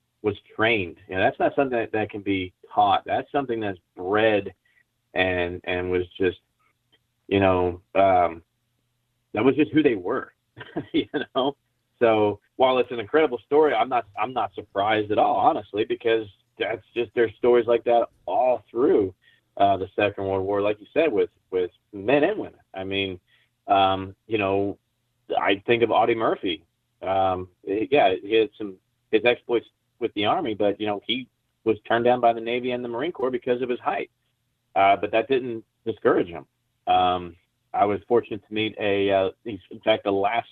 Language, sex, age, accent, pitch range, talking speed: English, male, 30-49, American, 95-120 Hz, 180 wpm